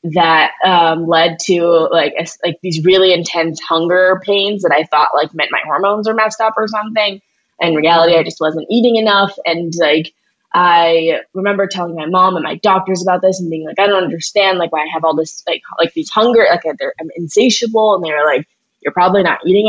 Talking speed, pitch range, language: 225 wpm, 155-190 Hz, English